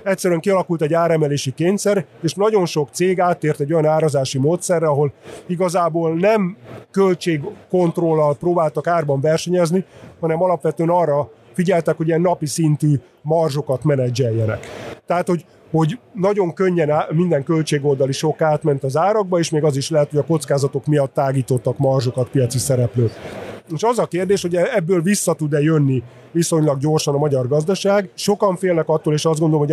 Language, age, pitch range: Hungarian, 30-49, 140-170 Hz